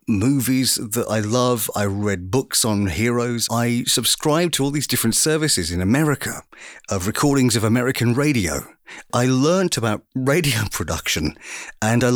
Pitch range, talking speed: 110-145 Hz, 150 wpm